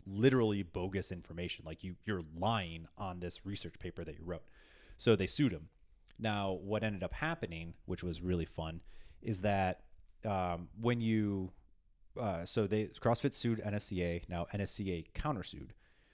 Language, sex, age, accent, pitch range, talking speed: English, male, 30-49, American, 85-105 Hz, 150 wpm